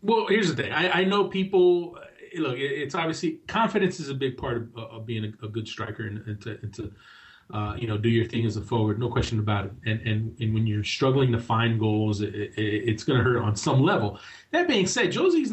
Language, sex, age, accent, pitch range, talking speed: English, male, 30-49, American, 115-165 Hz, 245 wpm